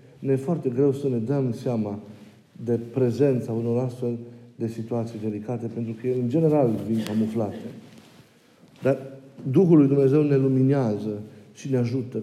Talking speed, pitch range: 145 wpm, 125-165 Hz